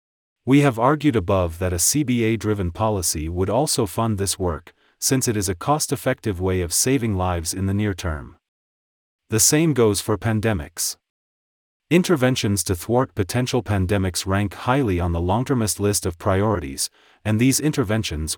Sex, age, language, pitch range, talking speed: male, 30-49, English, 90-120 Hz, 165 wpm